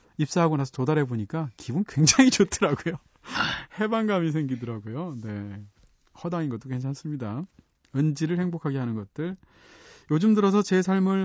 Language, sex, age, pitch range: Korean, male, 40-59, 125-170 Hz